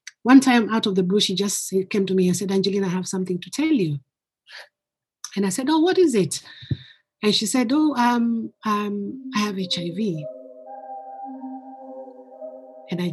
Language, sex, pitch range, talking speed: English, female, 185-245 Hz, 175 wpm